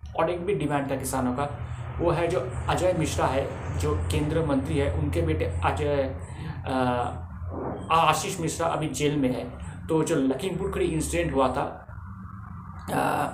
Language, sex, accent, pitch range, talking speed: Hindi, male, native, 130-160 Hz, 155 wpm